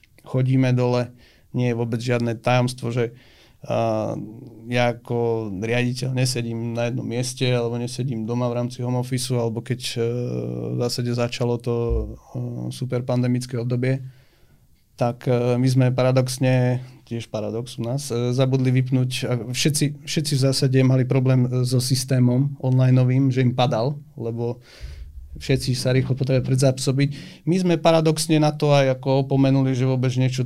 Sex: male